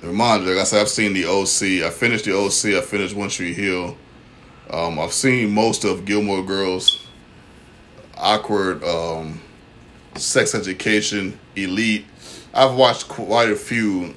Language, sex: English, male